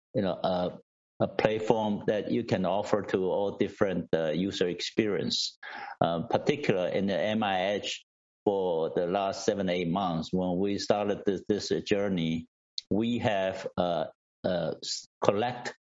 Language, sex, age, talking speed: English, male, 60-79, 140 wpm